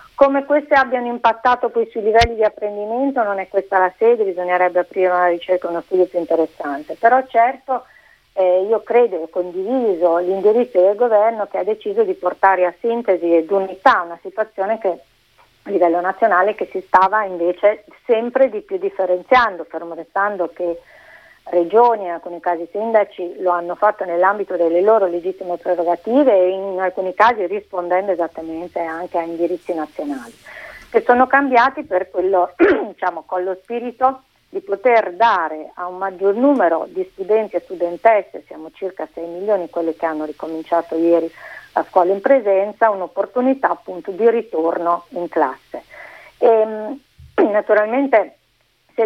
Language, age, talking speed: Italian, 50-69, 150 wpm